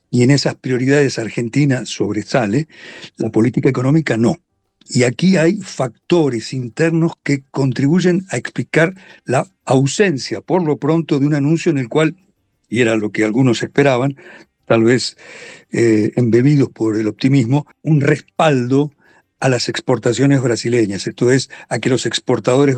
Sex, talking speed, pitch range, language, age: male, 145 wpm, 115-155 Hz, Spanish, 60-79